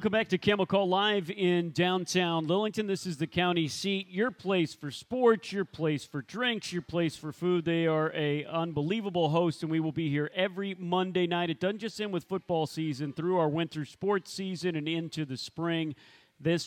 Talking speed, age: 200 wpm, 40-59